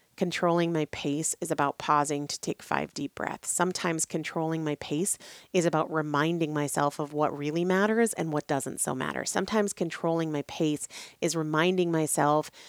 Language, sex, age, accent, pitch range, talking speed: English, female, 30-49, American, 150-175 Hz, 165 wpm